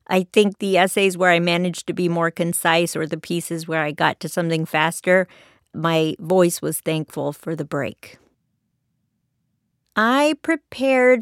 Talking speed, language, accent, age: 155 wpm, English, American, 40-59